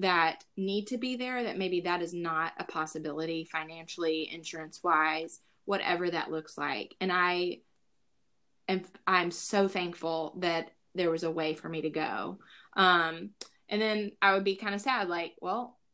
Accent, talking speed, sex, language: American, 170 wpm, female, English